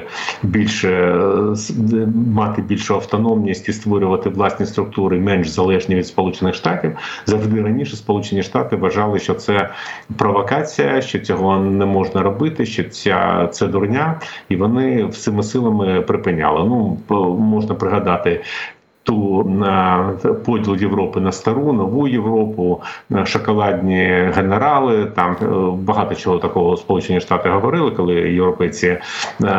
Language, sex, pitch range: Ukrainian, male, 95-115 Hz